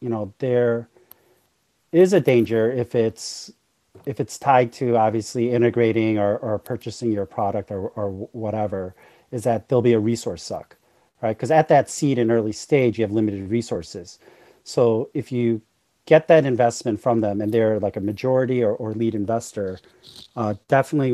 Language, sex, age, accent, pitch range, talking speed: English, male, 40-59, American, 110-125 Hz, 170 wpm